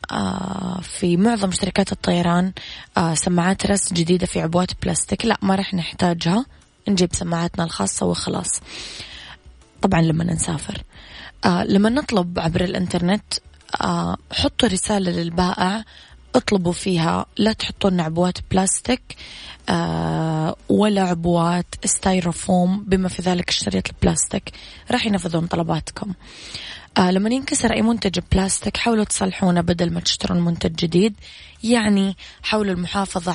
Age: 20-39